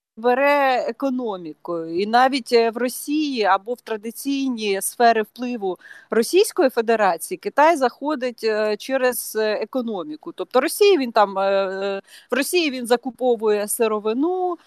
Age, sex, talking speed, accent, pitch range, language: 30-49, female, 105 wpm, native, 210-270 Hz, Ukrainian